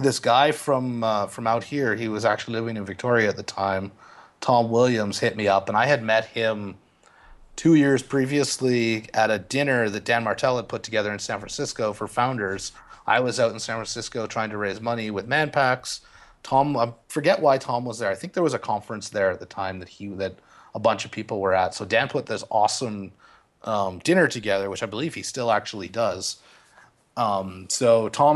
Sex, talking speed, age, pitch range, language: male, 210 wpm, 30-49, 105-125 Hz, English